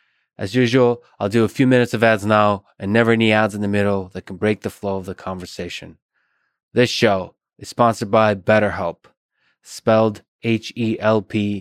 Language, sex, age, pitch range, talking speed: English, male, 20-39, 100-115 Hz, 170 wpm